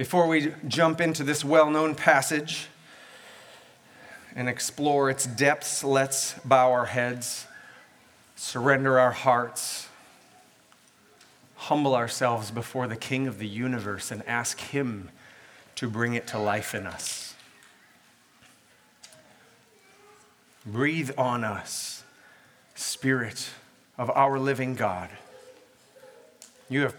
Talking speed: 100 wpm